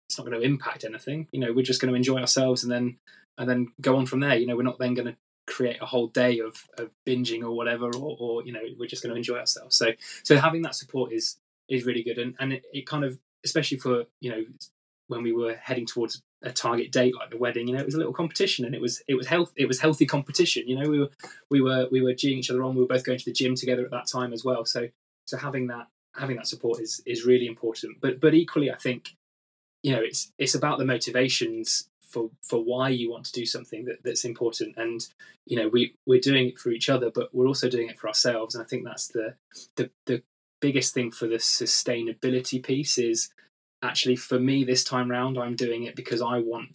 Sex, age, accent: male, 20-39, British